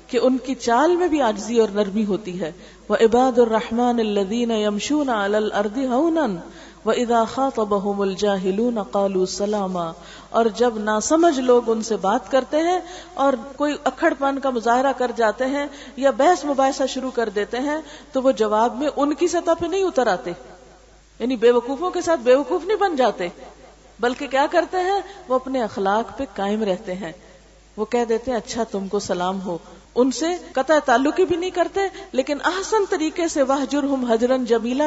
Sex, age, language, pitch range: female, 50-69, Urdu, 210-285 Hz